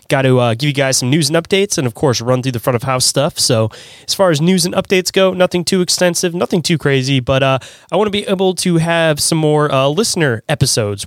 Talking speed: 260 wpm